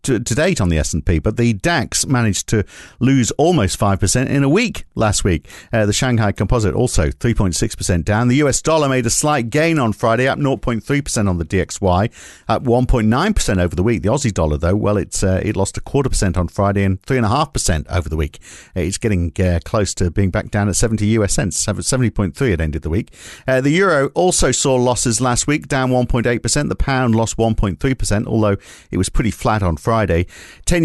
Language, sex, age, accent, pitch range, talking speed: English, male, 50-69, British, 95-130 Hz, 205 wpm